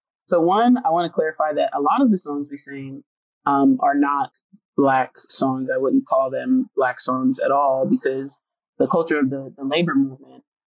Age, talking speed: 20-39, 195 wpm